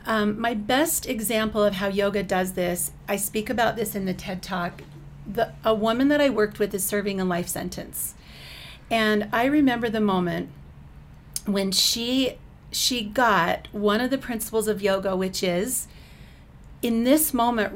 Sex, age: female, 40-59